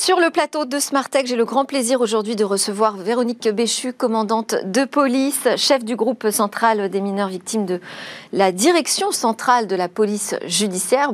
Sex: female